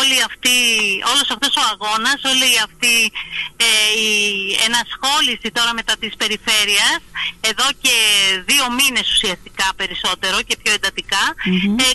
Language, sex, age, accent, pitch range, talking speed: Greek, female, 30-49, native, 230-305 Hz, 130 wpm